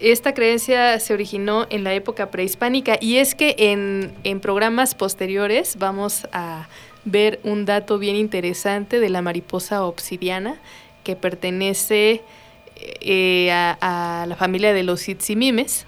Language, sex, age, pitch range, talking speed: Spanish, female, 20-39, 190-225 Hz, 135 wpm